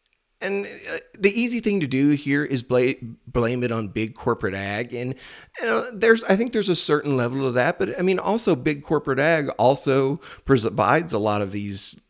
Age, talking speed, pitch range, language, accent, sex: 30-49, 200 wpm, 95-135 Hz, English, American, male